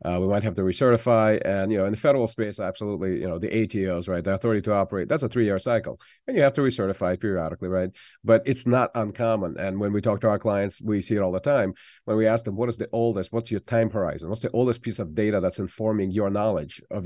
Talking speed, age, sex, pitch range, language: 260 wpm, 40-59, male, 100-120 Hz, English